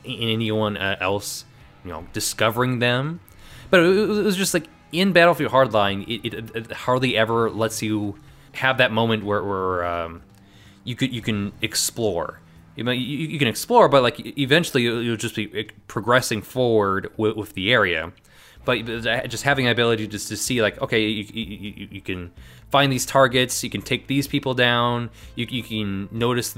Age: 20-39